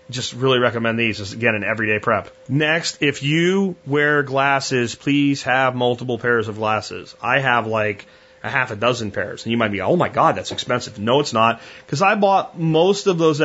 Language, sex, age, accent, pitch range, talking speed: English, male, 30-49, American, 110-140 Hz, 210 wpm